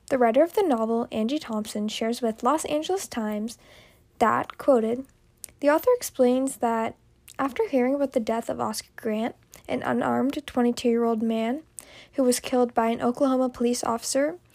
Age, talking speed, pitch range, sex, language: 10-29, 155 wpm, 230-285 Hz, female, English